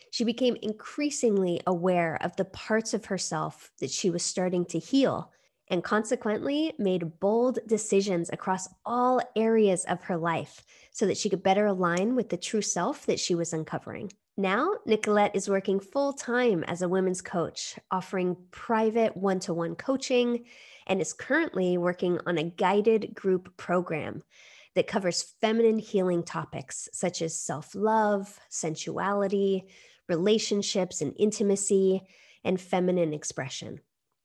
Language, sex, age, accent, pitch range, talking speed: English, female, 20-39, American, 180-230 Hz, 135 wpm